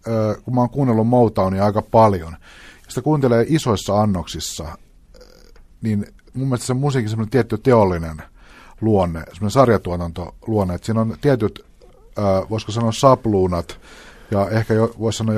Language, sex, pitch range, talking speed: Finnish, male, 90-115 Hz, 140 wpm